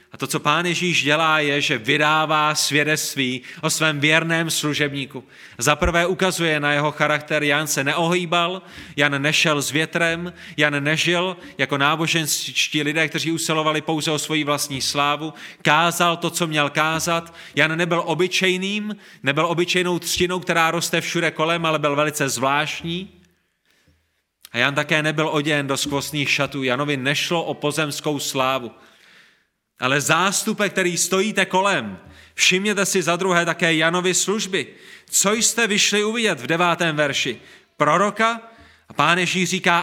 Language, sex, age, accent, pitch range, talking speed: Czech, male, 30-49, native, 150-185 Hz, 140 wpm